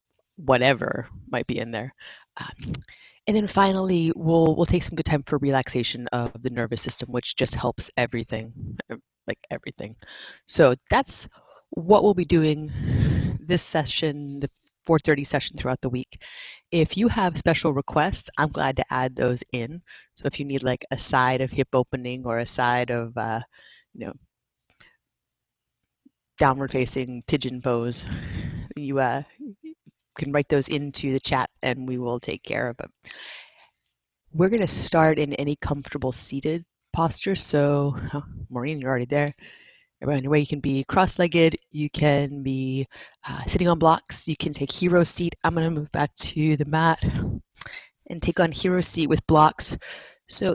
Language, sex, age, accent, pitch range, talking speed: English, female, 30-49, American, 130-165 Hz, 160 wpm